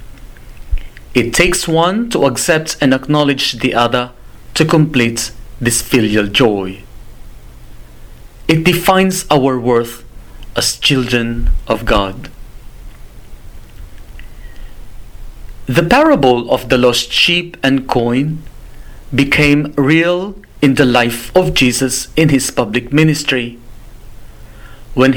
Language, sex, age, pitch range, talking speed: English, male, 40-59, 120-150 Hz, 100 wpm